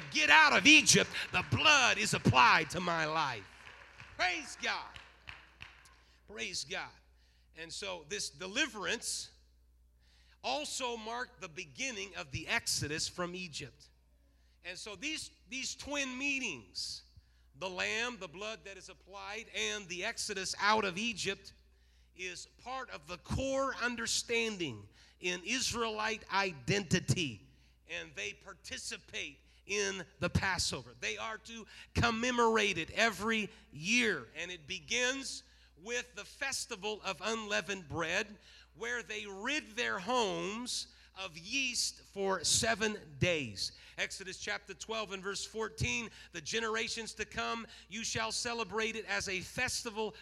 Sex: male